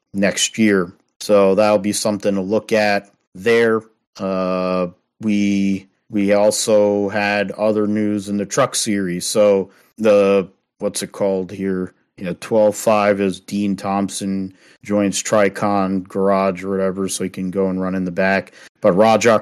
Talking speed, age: 150 wpm, 40-59